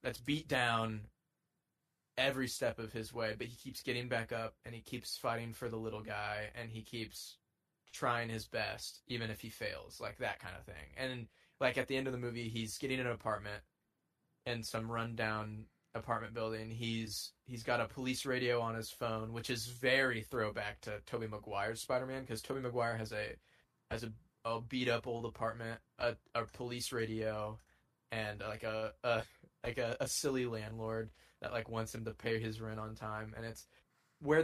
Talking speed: 190 wpm